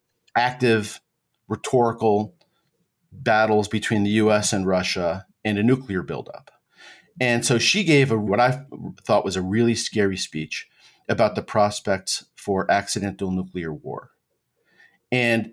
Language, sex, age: English, male, 40-59